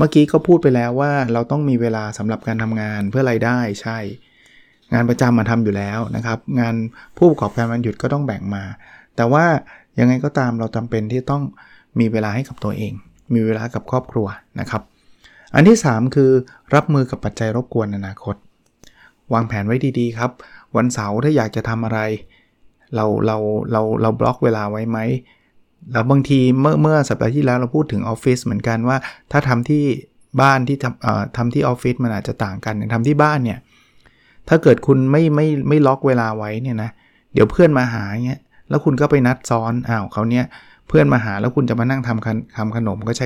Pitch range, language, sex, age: 110-135 Hz, Thai, male, 20-39